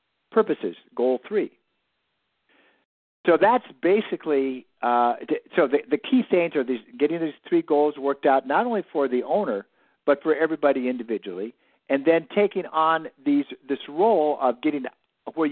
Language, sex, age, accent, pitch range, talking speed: English, male, 50-69, American, 135-210 Hz, 145 wpm